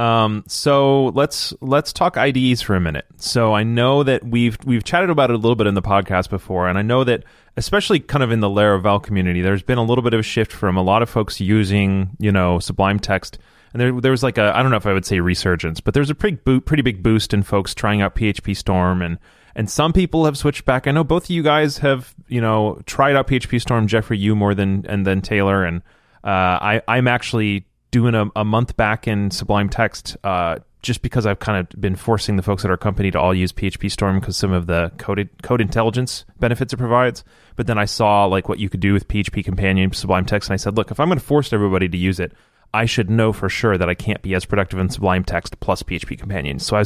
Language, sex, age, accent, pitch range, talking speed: English, male, 30-49, American, 95-125 Hz, 250 wpm